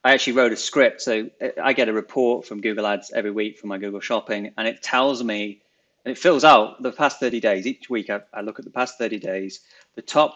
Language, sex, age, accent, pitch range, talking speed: English, male, 30-49, British, 100-120 Hz, 250 wpm